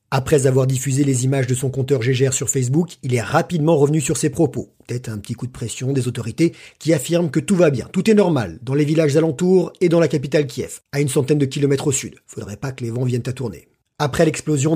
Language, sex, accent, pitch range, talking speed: French, male, French, 125-155 Hz, 250 wpm